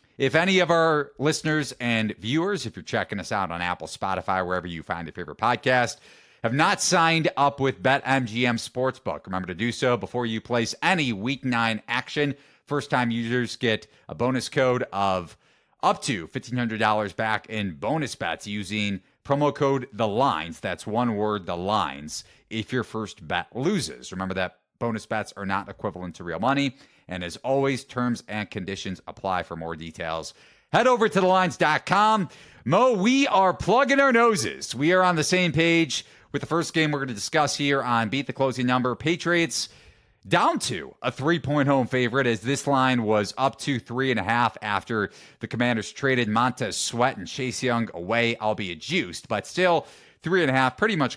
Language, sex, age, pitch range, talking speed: English, male, 30-49, 105-140 Hz, 185 wpm